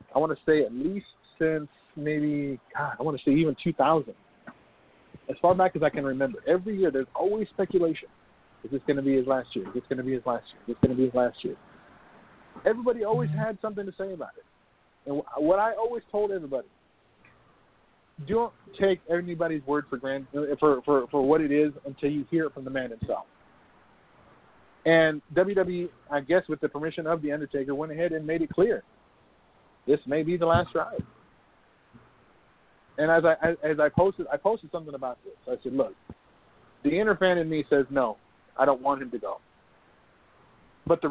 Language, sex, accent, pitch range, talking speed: English, male, American, 140-175 Hz, 200 wpm